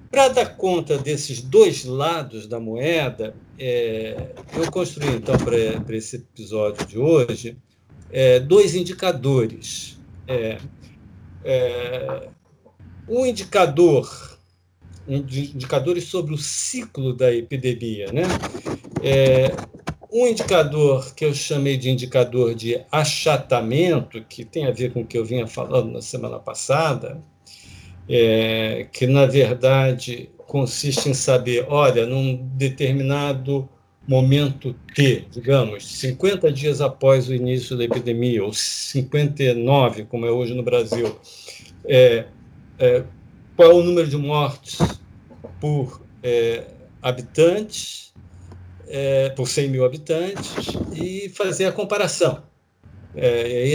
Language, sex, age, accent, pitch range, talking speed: Portuguese, male, 50-69, Brazilian, 120-155 Hz, 110 wpm